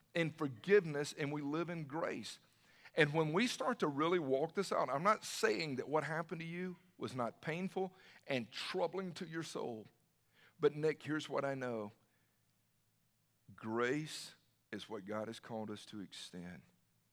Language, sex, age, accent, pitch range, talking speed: English, male, 50-69, American, 110-155 Hz, 165 wpm